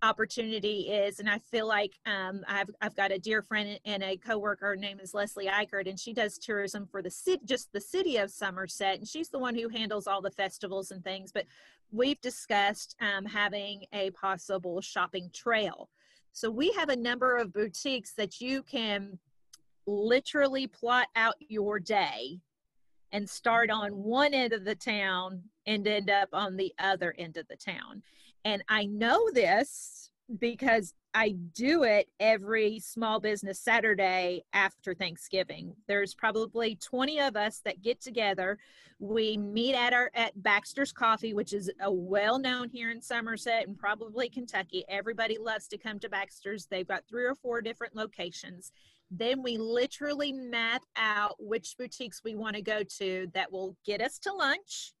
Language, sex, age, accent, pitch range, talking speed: English, female, 30-49, American, 195-235 Hz, 170 wpm